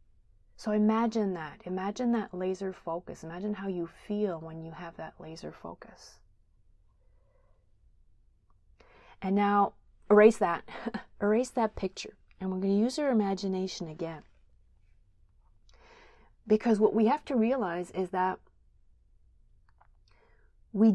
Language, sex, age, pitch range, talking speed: English, female, 30-49, 175-225 Hz, 115 wpm